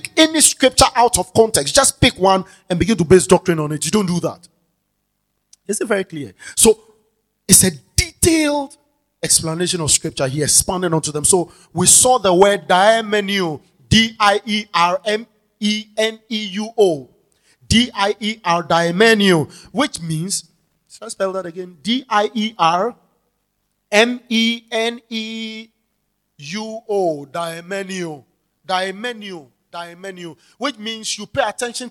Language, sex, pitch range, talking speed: English, male, 175-225 Hz, 150 wpm